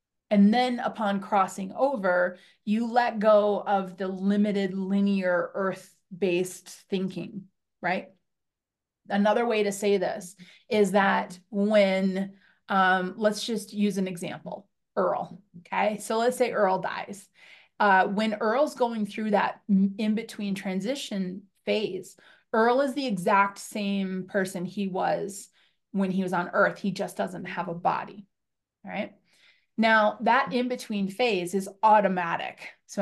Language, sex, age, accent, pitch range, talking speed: English, female, 30-49, American, 185-215 Hz, 135 wpm